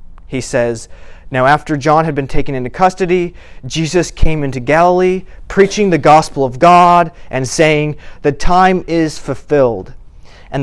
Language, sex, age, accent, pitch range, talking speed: English, male, 30-49, American, 110-155 Hz, 145 wpm